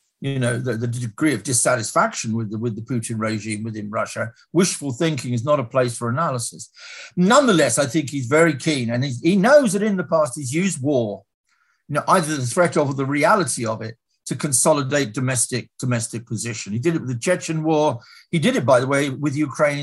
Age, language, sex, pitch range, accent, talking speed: 50-69, English, male, 125-170 Hz, British, 210 wpm